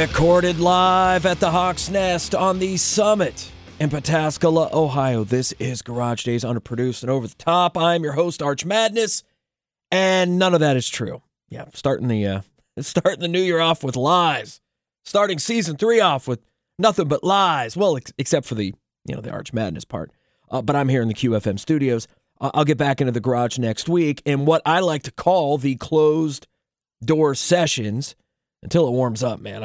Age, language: 30-49, English